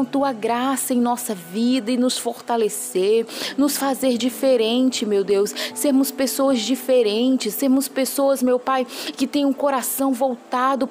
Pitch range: 240-280 Hz